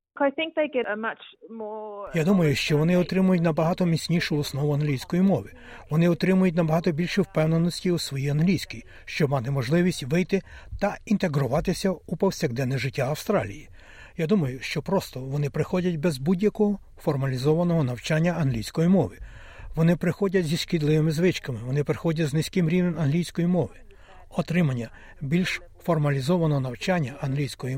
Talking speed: 125 wpm